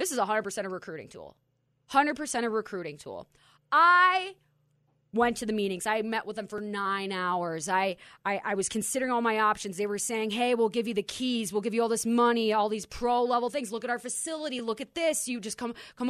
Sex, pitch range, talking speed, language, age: female, 175-235 Hz, 225 wpm, English, 20-39